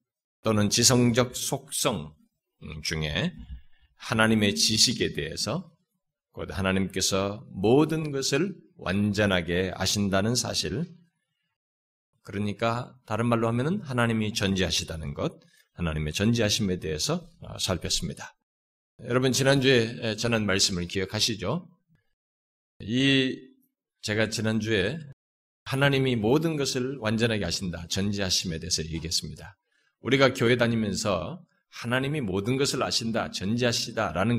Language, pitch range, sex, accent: Korean, 95-130 Hz, male, native